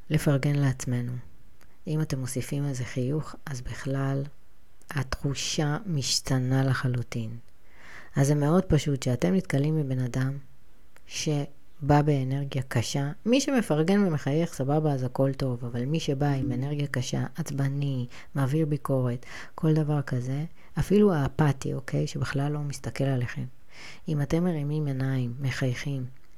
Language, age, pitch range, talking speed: Hebrew, 30-49, 135-175 Hz, 125 wpm